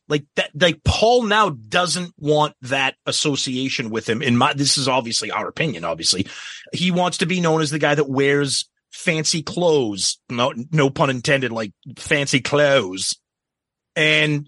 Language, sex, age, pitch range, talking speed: English, male, 30-49, 135-175 Hz, 160 wpm